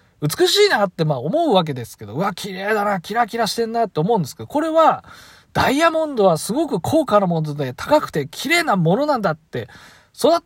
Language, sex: Japanese, male